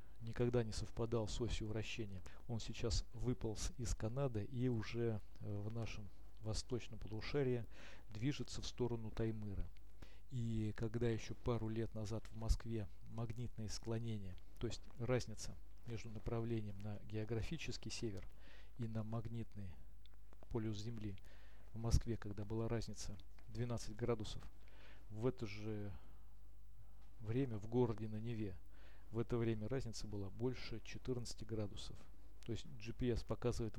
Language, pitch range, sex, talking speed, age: Russian, 100-115 Hz, male, 125 wpm, 40-59